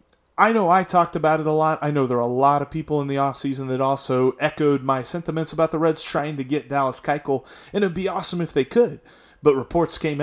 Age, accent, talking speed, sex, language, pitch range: 30-49, American, 245 wpm, male, English, 130-170 Hz